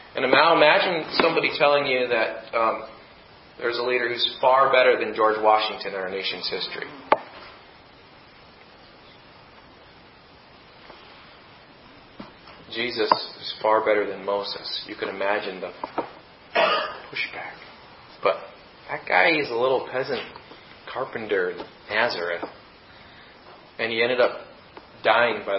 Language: English